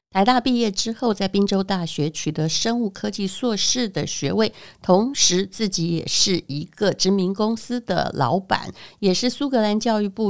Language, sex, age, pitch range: Chinese, female, 60-79, 165-205 Hz